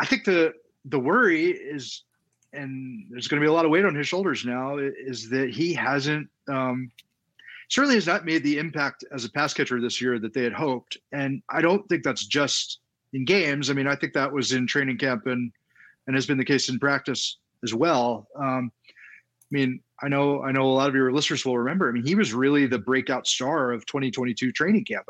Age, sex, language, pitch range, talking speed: 30-49, male, English, 125-160 Hz, 220 wpm